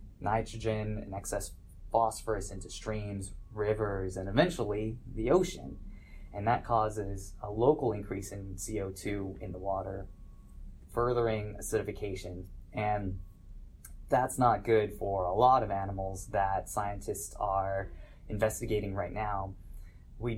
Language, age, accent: English, 20-39, American